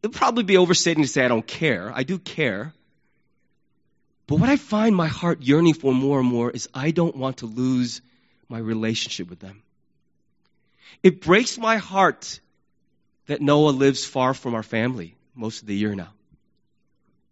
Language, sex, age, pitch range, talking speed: English, male, 30-49, 125-185 Hz, 175 wpm